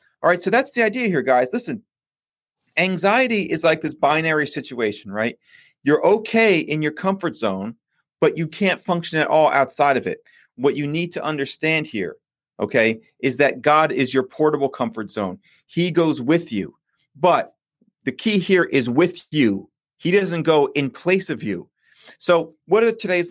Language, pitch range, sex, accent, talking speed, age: English, 135-175 Hz, male, American, 175 wpm, 30-49